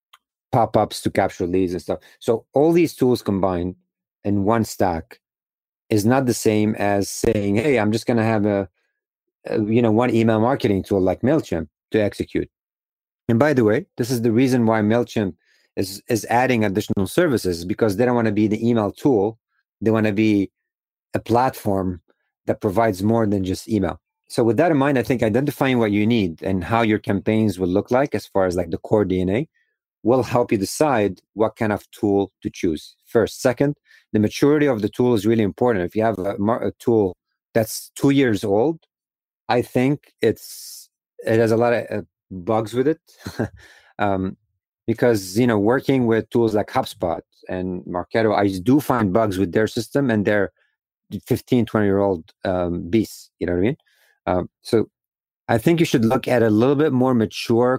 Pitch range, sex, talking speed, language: 100-125 Hz, male, 190 wpm, English